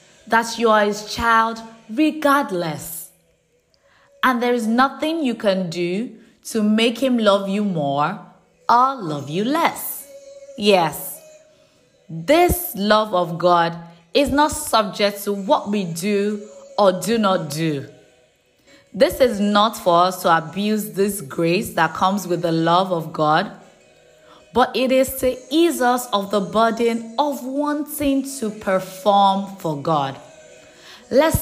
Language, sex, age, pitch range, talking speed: English, female, 20-39, 175-245 Hz, 135 wpm